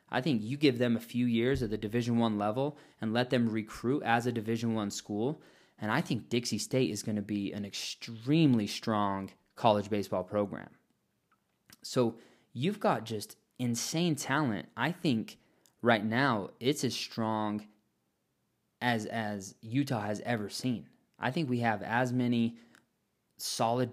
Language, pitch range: English, 100-120 Hz